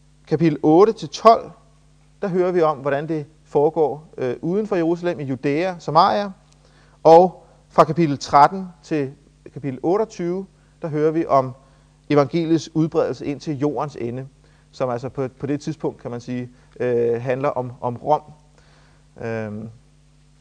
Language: Danish